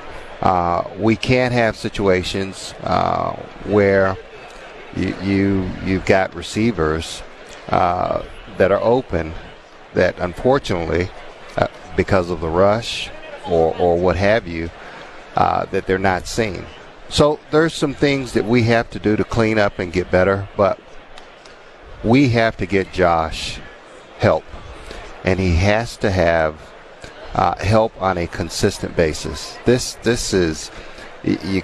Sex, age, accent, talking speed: male, 50-69, American, 135 wpm